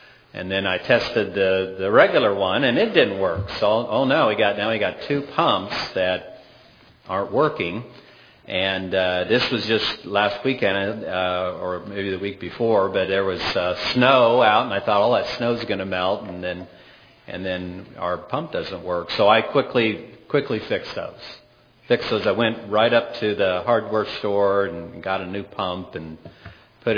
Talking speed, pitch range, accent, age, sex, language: 190 wpm, 90-110 Hz, American, 40-59, male, English